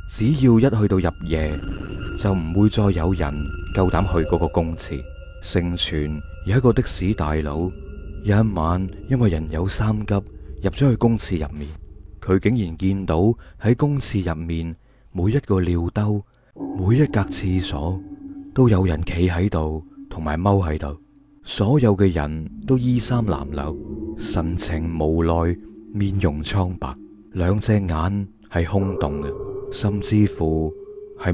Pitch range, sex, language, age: 80-110 Hz, male, Chinese, 20-39